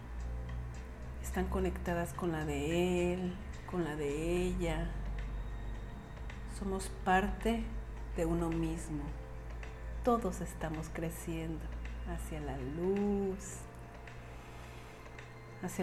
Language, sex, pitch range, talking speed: Spanish, female, 135-185 Hz, 85 wpm